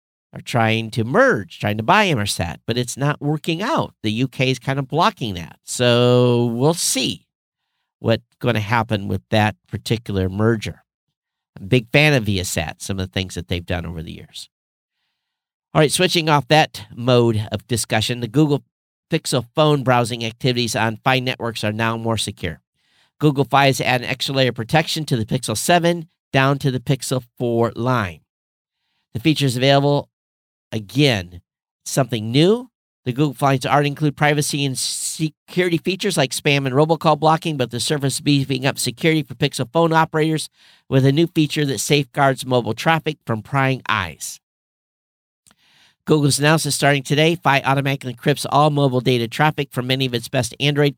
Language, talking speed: English, 175 wpm